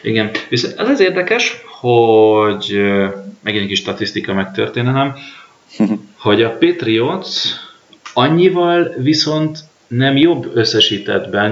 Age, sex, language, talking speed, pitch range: 20-39, male, Hungarian, 100 wpm, 100-125 Hz